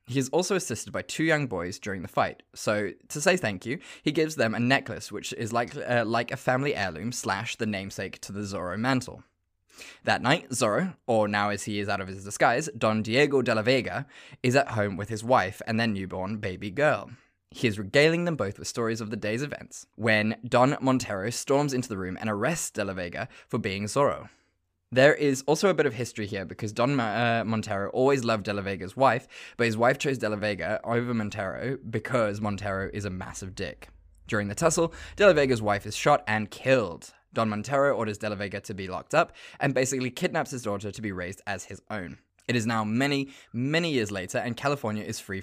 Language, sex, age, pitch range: English, male, 20-39, 100-130 Hz